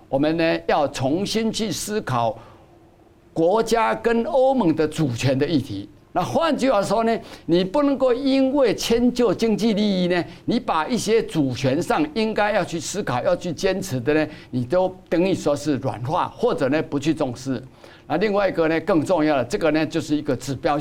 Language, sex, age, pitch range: Chinese, male, 60-79, 140-220 Hz